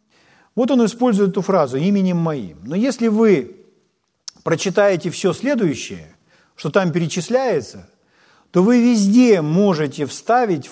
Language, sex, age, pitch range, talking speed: Ukrainian, male, 50-69, 155-215 Hz, 120 wpm